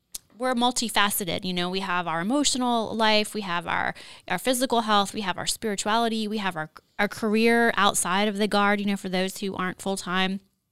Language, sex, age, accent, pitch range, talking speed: English, female, 20-39, American, 185-230 Hz, 200 wpm